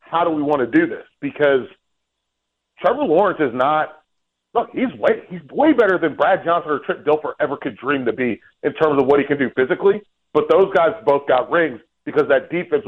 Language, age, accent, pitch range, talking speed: English, 30-49, American, 140-180 Hz, 220 wpm